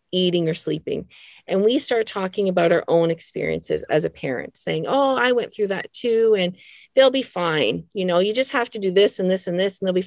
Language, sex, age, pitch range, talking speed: English, female, 40-59, 175-215 Hz, 240 wpm